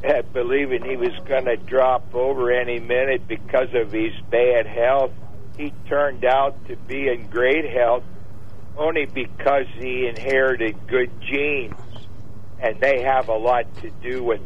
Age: 60-79